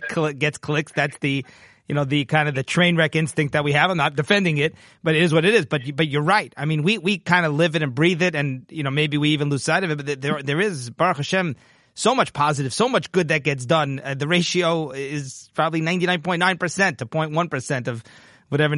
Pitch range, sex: 145-175 Hz, male